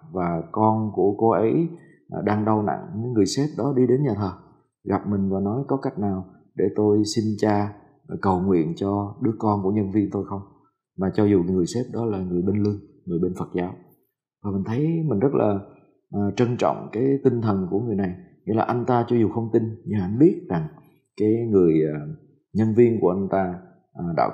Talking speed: 205 wpm